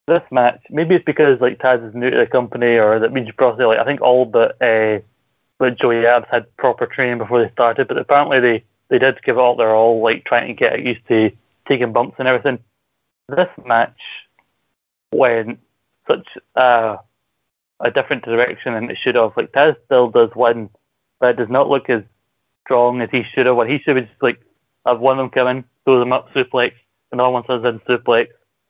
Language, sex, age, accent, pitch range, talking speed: English, male, 20-39, British, 115-130 Hz, 205 wpm